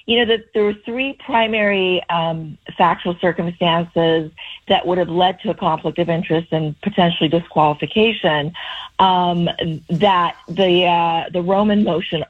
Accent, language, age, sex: American, English, 40-59, female